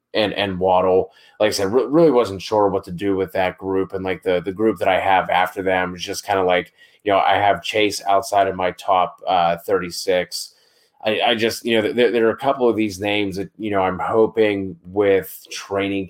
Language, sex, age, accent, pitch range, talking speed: English, male, 20-39, American, 95-105 Hz, 235 wpm